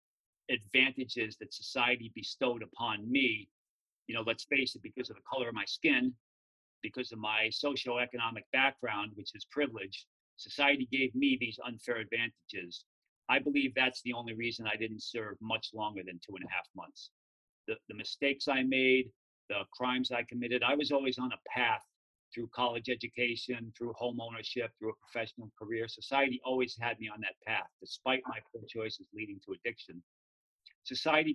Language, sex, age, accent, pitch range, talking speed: English, male, 40-59, American, 115-140 Hz, 170 wpm